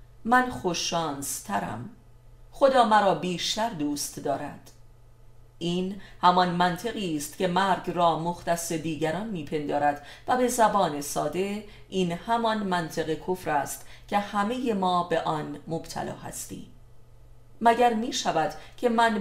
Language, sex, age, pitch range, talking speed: Persian, female, 40-59, 140-195 Hz, 120 wpm